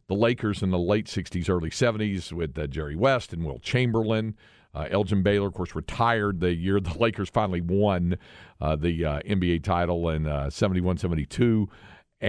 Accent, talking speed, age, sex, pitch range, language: American, 180 wpm, 50-69, male, 85-105 Hz, English